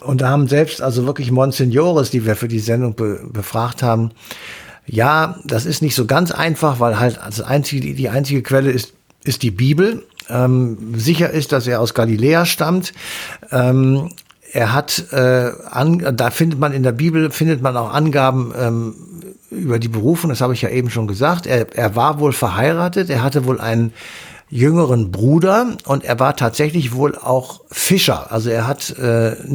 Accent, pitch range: German, 120-150 Hz